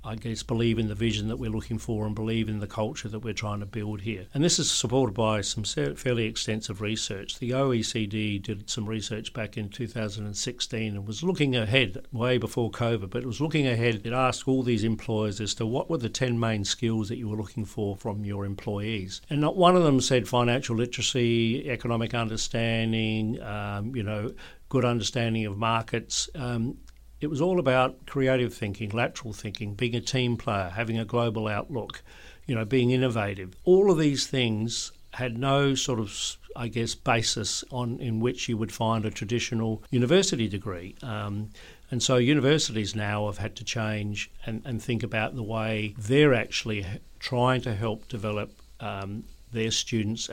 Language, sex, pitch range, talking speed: English, male, 105-125 Hz, 185 wpm